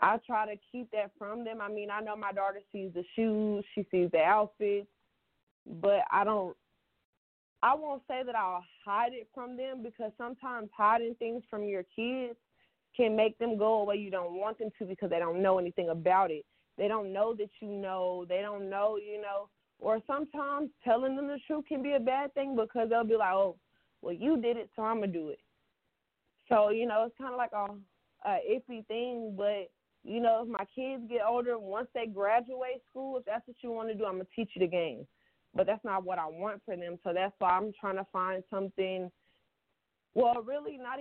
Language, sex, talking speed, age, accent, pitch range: English, female, 220 wpm, 20-39, American, 195-235 Hz